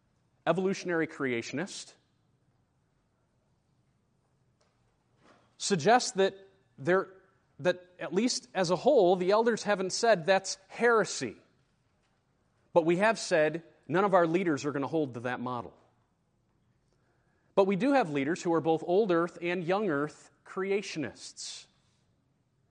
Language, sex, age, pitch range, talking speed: English, male, 30-49, 160-200 Hz, 120 wpm